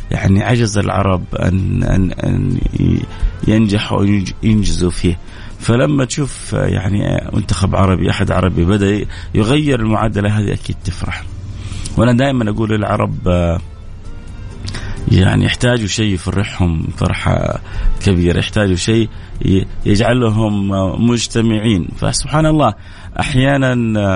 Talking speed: 95 wpm